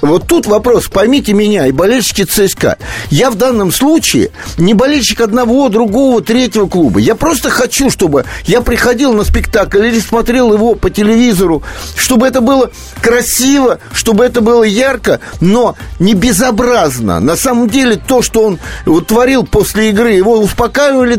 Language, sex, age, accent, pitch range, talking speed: Russian, male, 50-69, native, 205-255 Hz, 150 wpm